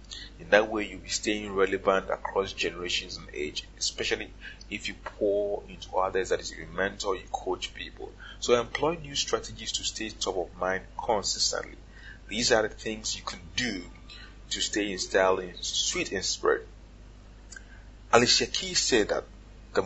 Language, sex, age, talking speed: English, male, 30-49, 165 wpm